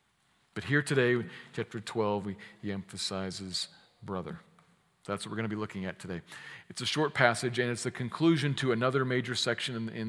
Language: English